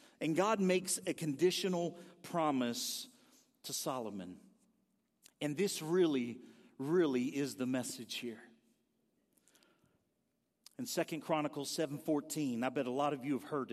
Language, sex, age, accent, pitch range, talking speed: English, male, 50-69, American, 130-195 Hz, 120 wpm